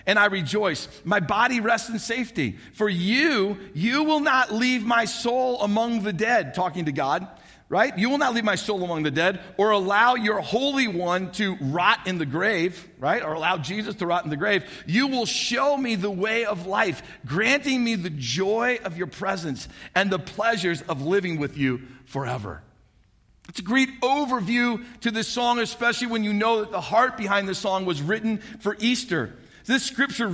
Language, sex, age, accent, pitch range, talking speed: English, male, 50-69, American, 185-235 Hz, 190 wpm